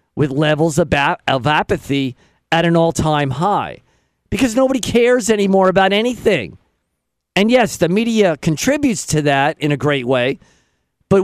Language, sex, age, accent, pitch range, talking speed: English, male, 50-69, American, 145-195 Hz, 140 wpm